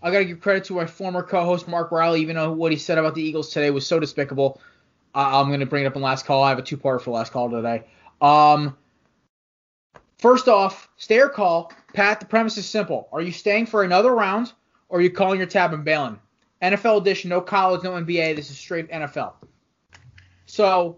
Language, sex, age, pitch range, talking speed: English, male, 20-39, 140-185 Hz, 225 wpm